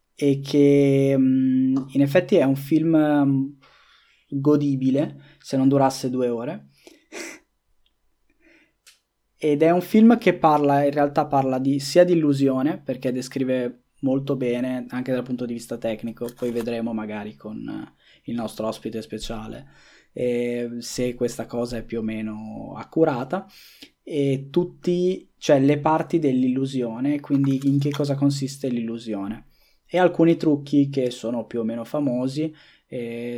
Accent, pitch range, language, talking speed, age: native, 120-150 Hz, Italian, 135 wpm, 20-39